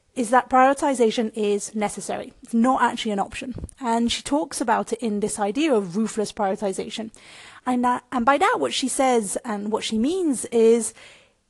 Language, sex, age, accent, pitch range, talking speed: English, female, 30-49, British, 205-255 Hz, 170 wpm